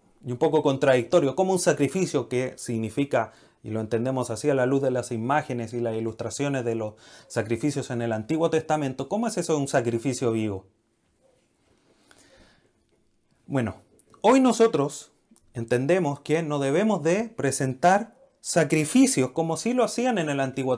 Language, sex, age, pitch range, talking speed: Spanish, male, 30-49, 120-165 Hz, 155 wpm